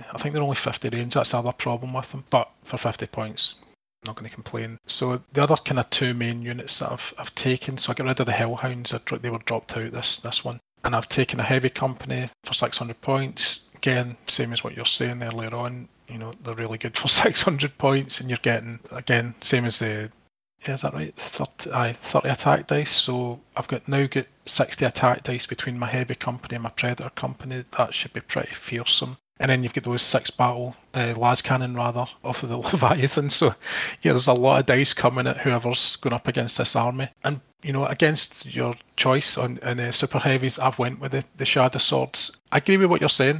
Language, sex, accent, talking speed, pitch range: English, male, British, 225 wpm, 120-135 Hz